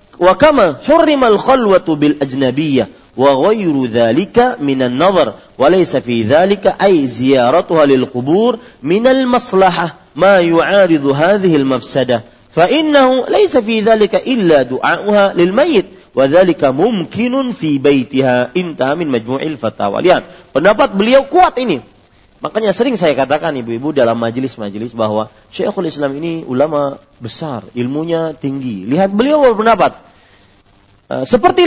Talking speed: 105 wpm